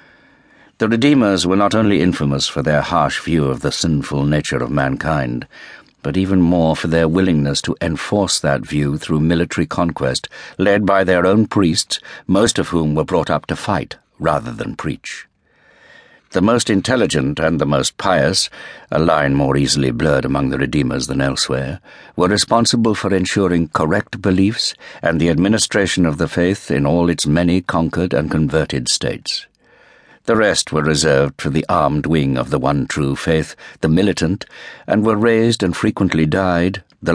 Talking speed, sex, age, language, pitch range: 165 wpm, male, 60-79, English, 75-95 Hz